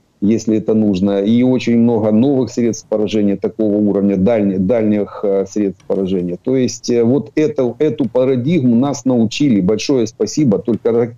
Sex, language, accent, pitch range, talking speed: male, Ukrainian, native, 100-120 Hz, 140 wpm